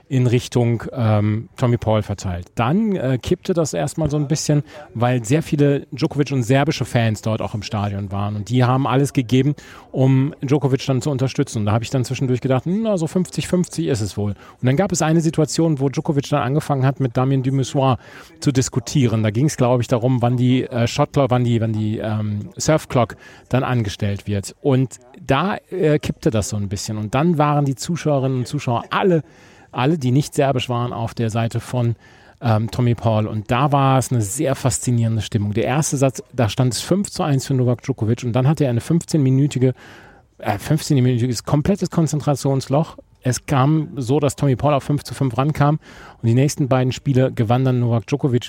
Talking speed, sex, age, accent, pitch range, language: 200 wpm, male, 40-59, German, 115-145 Hz, German